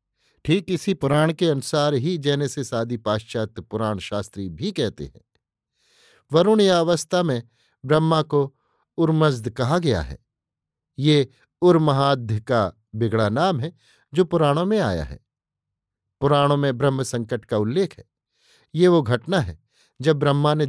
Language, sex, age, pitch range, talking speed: Hindi, male, 50-69, 115-155 Hz, 140 wpm